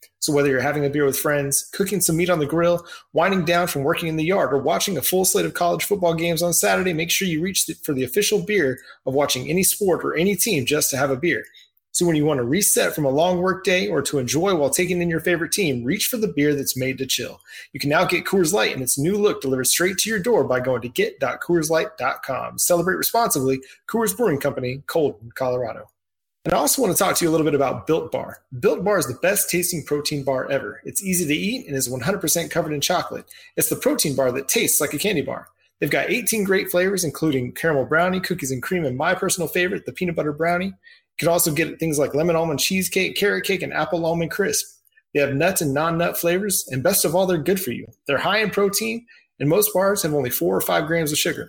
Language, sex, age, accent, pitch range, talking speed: English, male, 30-49, American, 140-190 Hz, 245 wpm